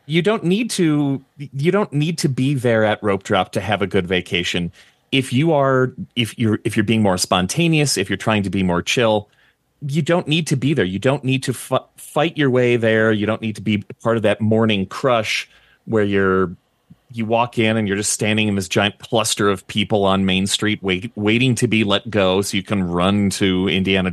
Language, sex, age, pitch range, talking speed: English, male, 30-49, 100-130 Hz, 225 wpm